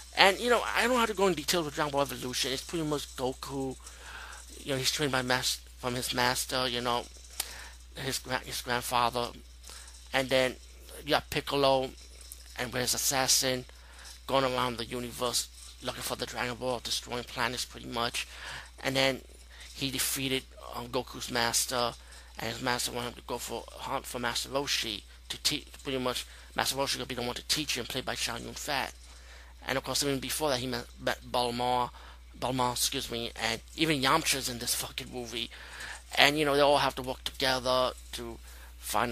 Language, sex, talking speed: English, male, 185 wpm